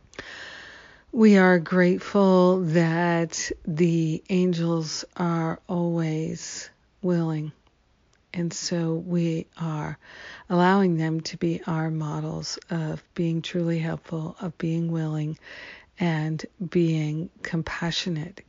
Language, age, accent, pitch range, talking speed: English, 50-69, American, 160-180 Hz, 95 wpm